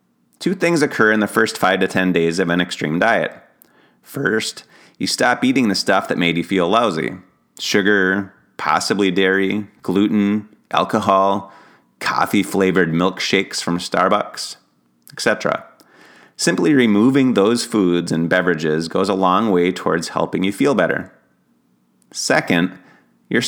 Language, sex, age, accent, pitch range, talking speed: English, male, 30-49, American, 85-105 Hz, 135 wpm